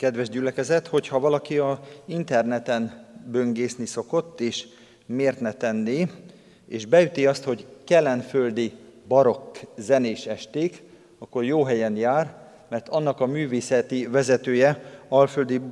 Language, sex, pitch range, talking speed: Hungarian, male, 120-145 Hz, 115 wpm